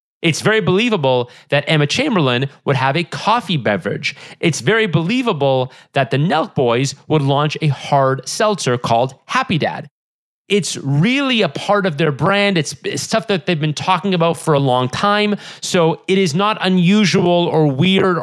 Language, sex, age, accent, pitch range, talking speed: English, male, 30-49, American, 140-180 Hz, 170 wpm